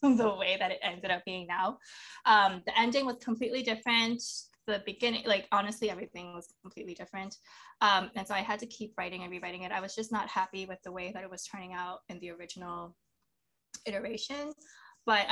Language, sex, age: English, female, 20-39